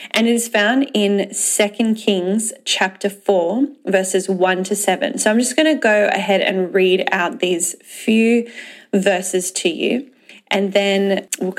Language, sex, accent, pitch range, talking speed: English, female, Australian, 195-230 Hz, 160 wpm